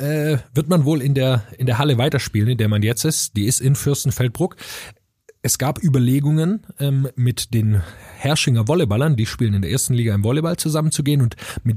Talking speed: 190 wpm